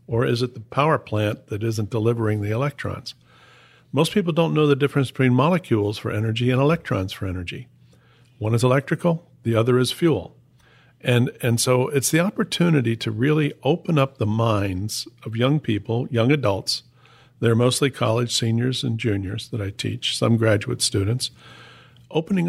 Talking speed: 165 wpm